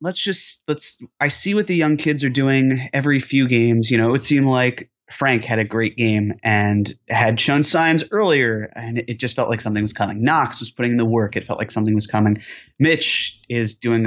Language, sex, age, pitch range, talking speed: English, male, 20-39, 110-135 Hz, 220 wpm